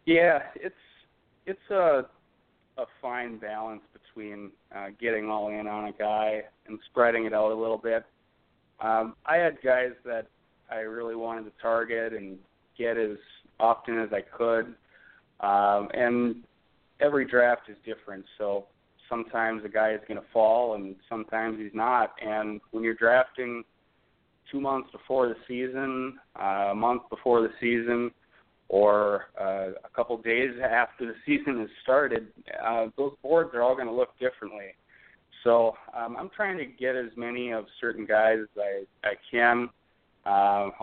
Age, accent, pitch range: 30-49, American, 105-120 Hz